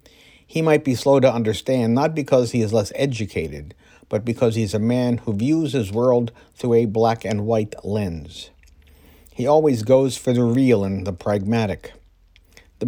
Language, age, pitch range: English, 50-69, 90-130 Hz